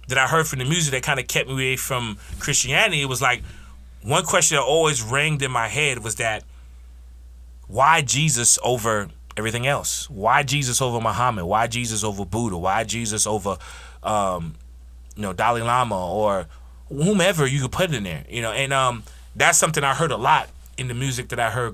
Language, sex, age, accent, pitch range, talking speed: English, male, 30-49, American, 105-145 Hz, 195 wpm